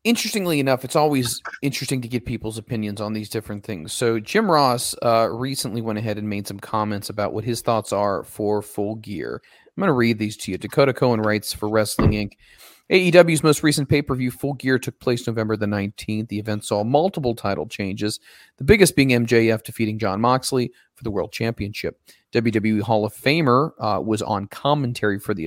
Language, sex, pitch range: English, male, 110-140 Hz